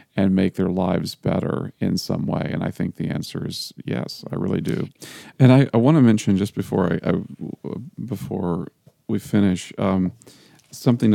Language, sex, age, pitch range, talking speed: English, male, 40-59, 95-110 Hz, 180 wpm